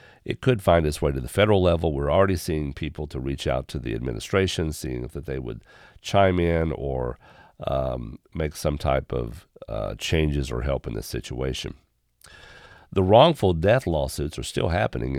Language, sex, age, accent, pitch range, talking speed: English, male, 50-69, American, 70-95 Hz, 180 wpm